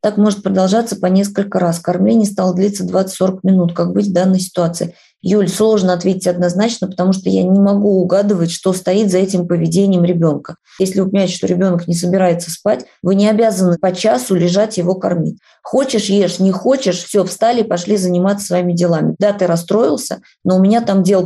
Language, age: Russian, 20-39